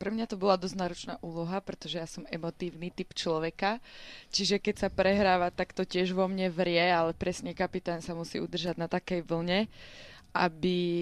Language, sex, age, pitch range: Slovak, female, 20-39, 170-190 Hz